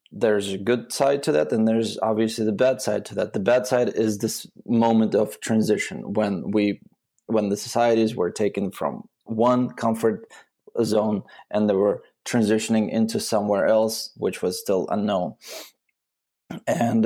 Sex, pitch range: male, 105-120 Hz